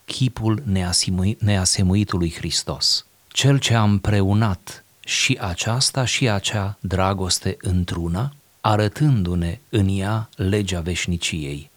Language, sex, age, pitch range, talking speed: Romanian, male, 30-49, 90-110 Hz, 90 wpm